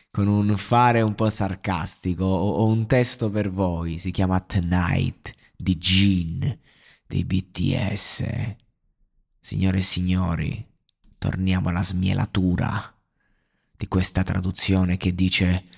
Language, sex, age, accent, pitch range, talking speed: Italian, male, 30-49, native, 90-105 Hz, 110 wpm